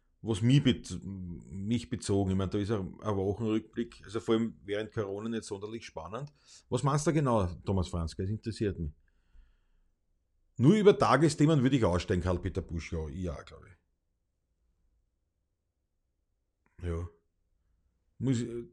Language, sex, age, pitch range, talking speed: German, male, 40-59, 85-130 Hz, 135 wpm